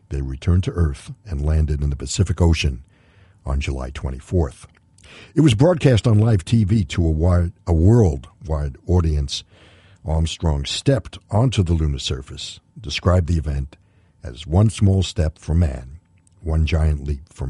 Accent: American